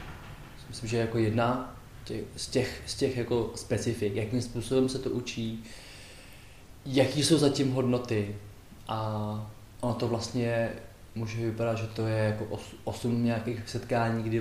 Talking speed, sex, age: 135 wpm, male, 20-39